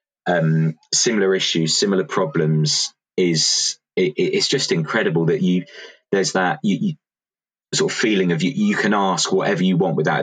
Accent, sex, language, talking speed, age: British, male, English, 145 wpm, 20-39